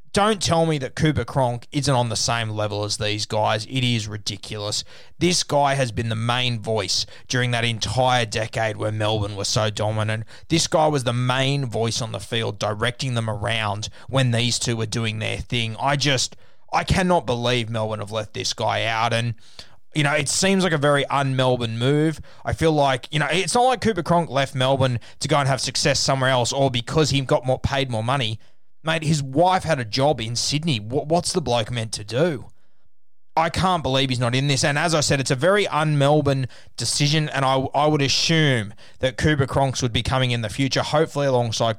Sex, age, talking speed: male, 20-39, 210 wpm